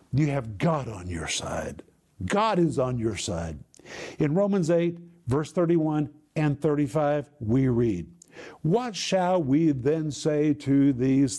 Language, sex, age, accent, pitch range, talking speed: English, male, 60-79, American, 145-190 Hz, 140 wpm